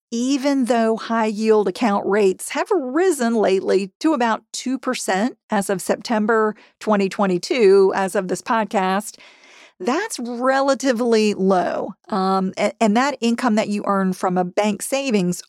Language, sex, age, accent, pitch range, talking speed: English, female, 40-59, American, 195-245 Hz, 130 wpm